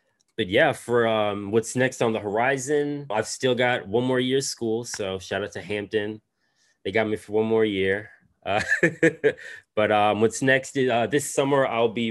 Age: 20-39